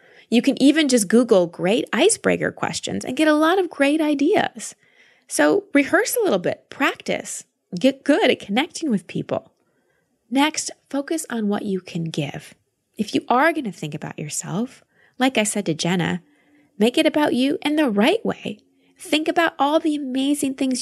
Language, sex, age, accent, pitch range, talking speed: English, female, 20-39, American, 175-250 Hz, 175 wpm